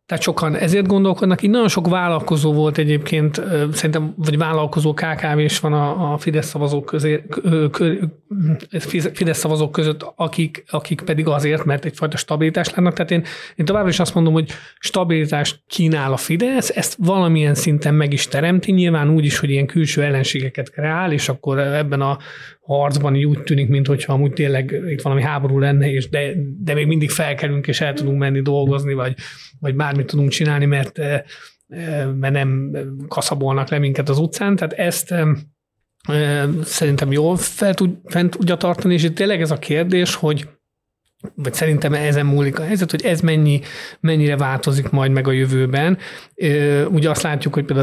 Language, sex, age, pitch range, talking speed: Hungarian, male, 30-49, 140-165 Hz, 165 wpm